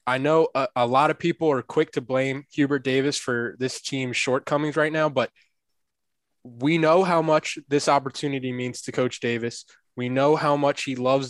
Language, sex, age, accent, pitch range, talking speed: English, male, 20-39, American, 120-145 Hz, 190 wpm